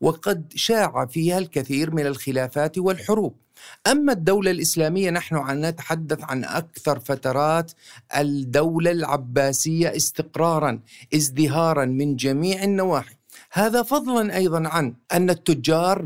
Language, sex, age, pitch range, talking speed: Arabic, male, 50-69, 150-195 Hz, 105 wpm